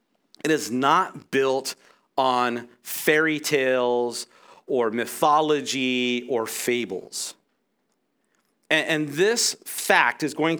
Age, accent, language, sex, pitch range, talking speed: 40-59, American, English, male, 120-160 Hz, 95 wpm